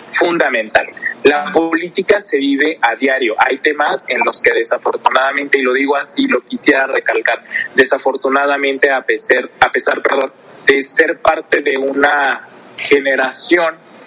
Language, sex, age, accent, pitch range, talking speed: Spanish, male, 30-49, Mexican, 135-195 Hz, 130 wpm